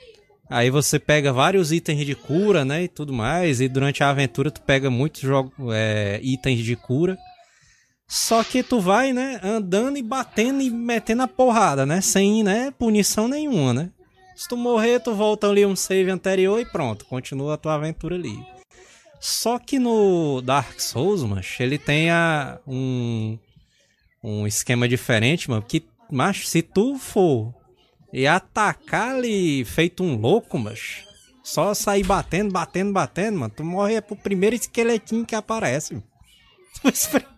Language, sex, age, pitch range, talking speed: Portuguese, male, 20-39, 130-215 Hz, 155 wpm